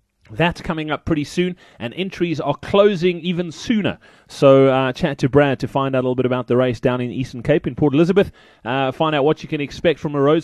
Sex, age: male, 30-49